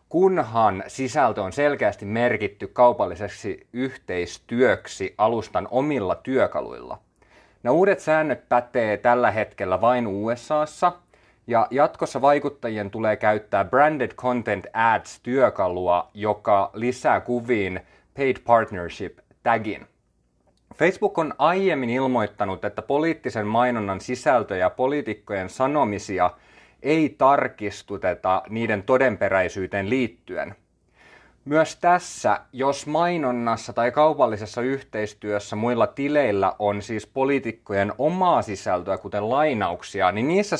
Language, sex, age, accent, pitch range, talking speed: Finnish, male, 30-49, native, 105-140 Hz, 95 wpm